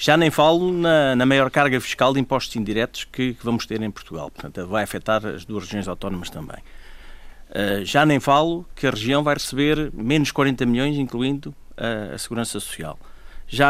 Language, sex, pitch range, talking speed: Portuguese, male, 110-145 Hz, 180 wpm